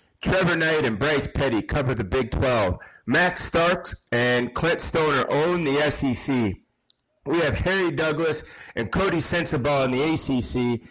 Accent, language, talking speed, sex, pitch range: American, English, 150 wpm, male, 120-145 Hz